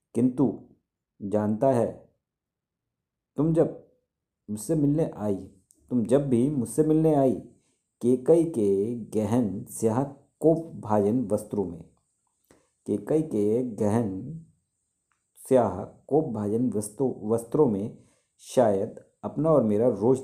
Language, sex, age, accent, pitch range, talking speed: Hindi, male, 50-69, native, 105-145 Hz, 110 wpm